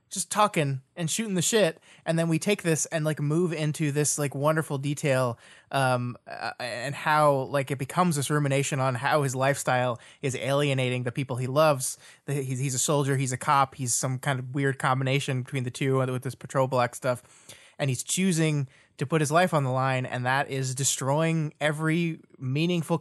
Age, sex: 20-39, male